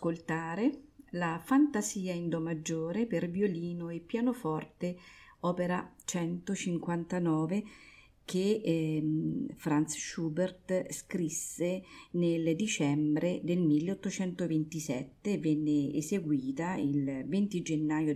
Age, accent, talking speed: 40-59, native, 80 wpm